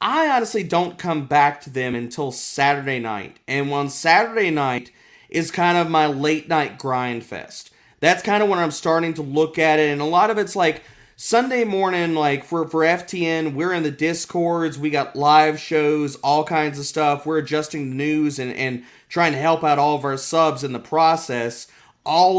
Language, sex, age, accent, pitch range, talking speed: English, male, 30-49, American, 140-170 Hz, 200 wpm